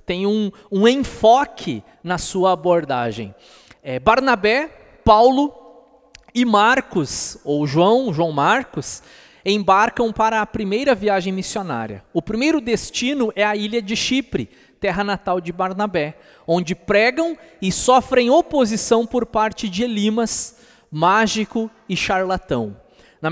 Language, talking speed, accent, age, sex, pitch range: Portuguese, 120 wpm, Brazilian, 20-39, male, 185-235 Hz